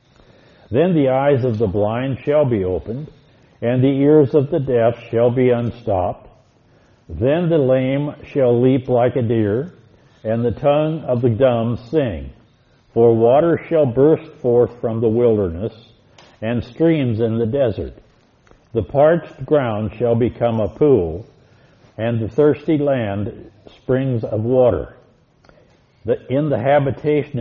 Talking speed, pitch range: 140 wpm, 115-140 Hz